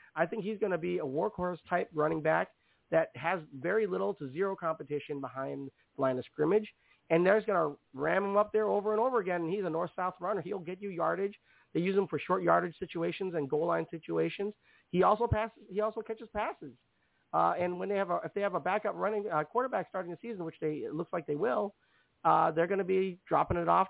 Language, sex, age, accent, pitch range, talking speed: English, male, 40-59, American, 145-195 Hz, 235 wpm